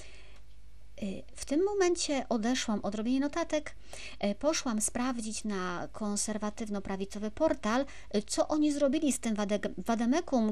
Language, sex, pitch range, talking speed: Polish, male, 185-250 Hz, 105 wpm